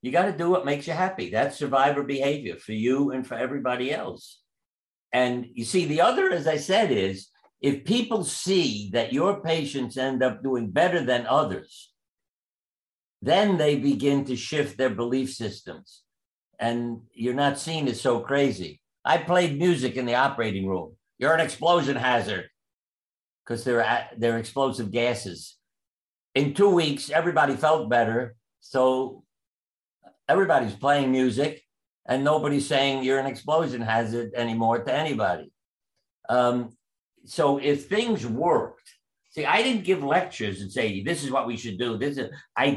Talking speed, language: 155 wpm, English